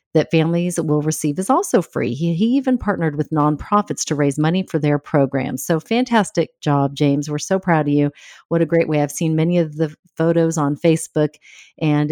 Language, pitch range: English, 150-185 Hz